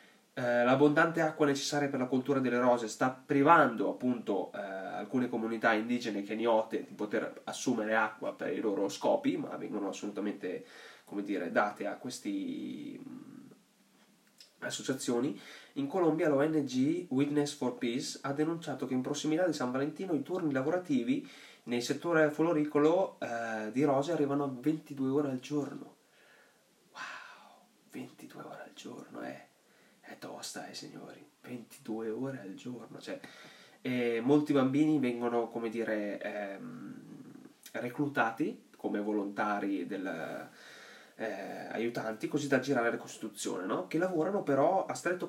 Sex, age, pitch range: male, 20-39, 120-160 Hz